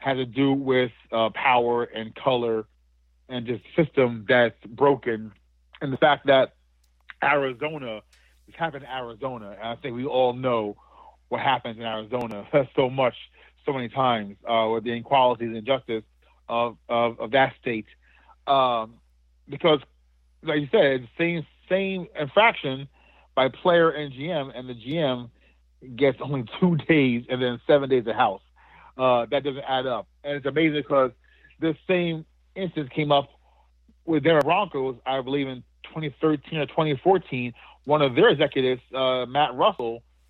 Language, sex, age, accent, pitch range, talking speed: English, male, 40-59, American, 115-150 Hz, 155 wpm